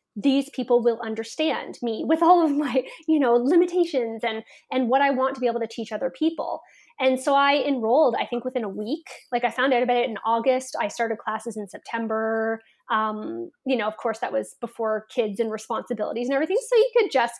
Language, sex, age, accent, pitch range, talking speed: English, female, 20-39, American, 230-280 Hz, 215 wpm